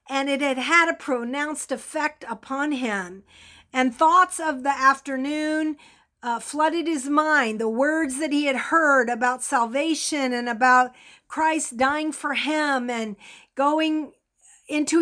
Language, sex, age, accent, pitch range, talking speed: English, female, 50-69, American, 255-315 Hz, 140 wpm